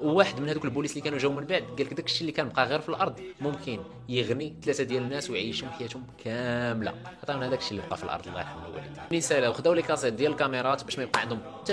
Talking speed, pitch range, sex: 235 wpm, 120-145 Hz, male